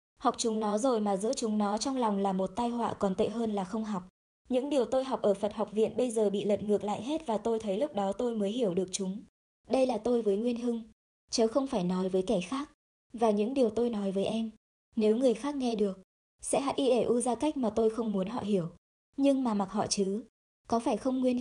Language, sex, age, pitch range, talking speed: Vietnamese, male, 20-39, 205-245 Hz, 250 wpm